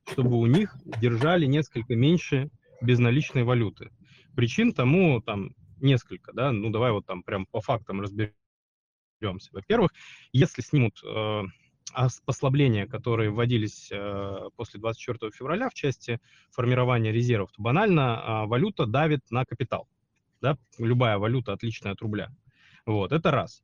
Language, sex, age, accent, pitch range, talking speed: Russian, male, 20-39, native, 110-130 Hz, 135 wpm